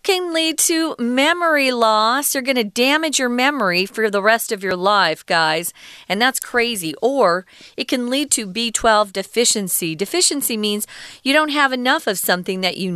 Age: 40-59